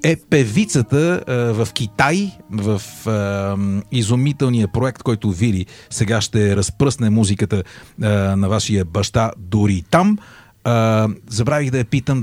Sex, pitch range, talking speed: male, 105-130 Hz, 130 wpm